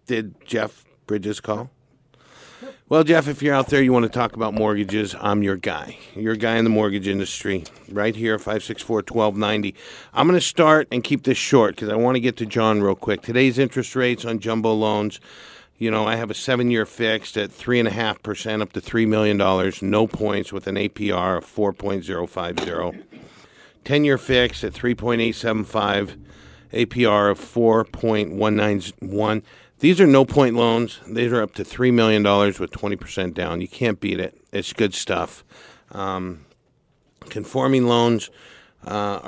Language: English